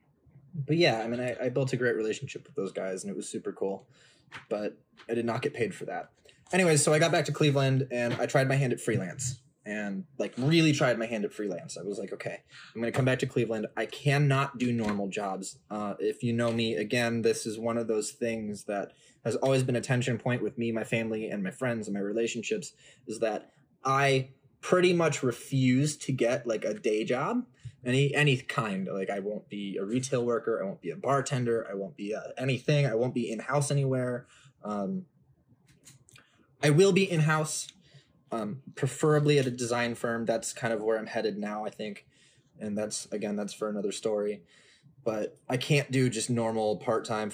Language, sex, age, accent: English, male, 20-39, American